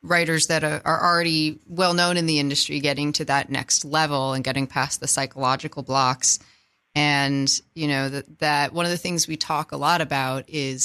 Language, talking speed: English, 190 wpm